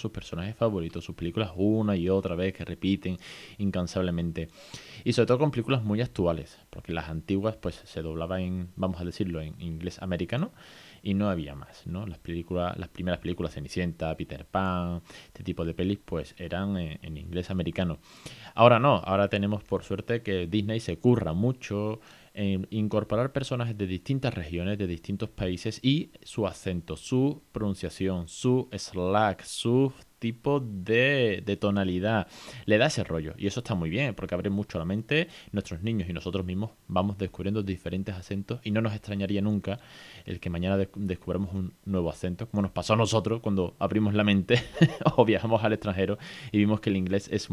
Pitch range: 90-110 Hz